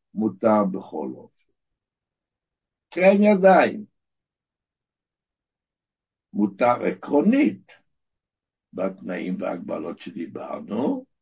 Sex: male